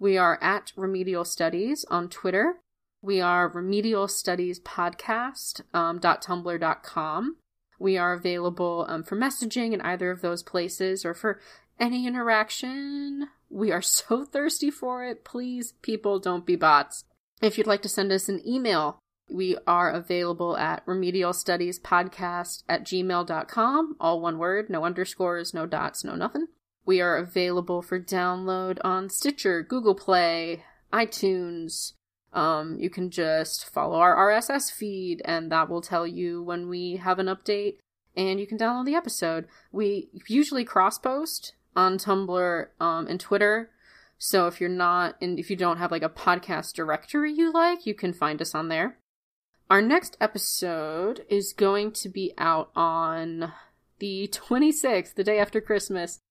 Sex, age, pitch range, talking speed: female, 30-49, 175-215 Hz, 150 wpm